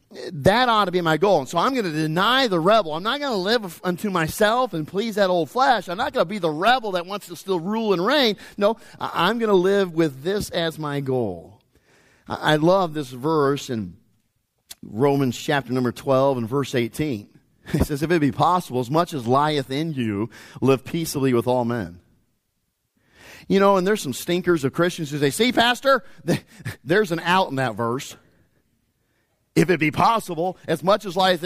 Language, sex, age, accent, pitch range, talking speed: English, male, 40-59, American, 130-195 Hz, 200 wpm